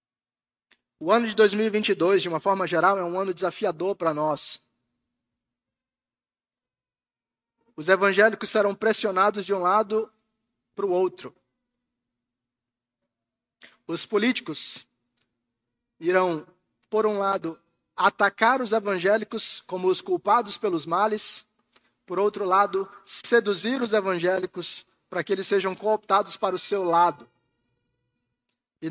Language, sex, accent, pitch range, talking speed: Portuguese, male, Brazilian, 160-215 Hz, 110 wpm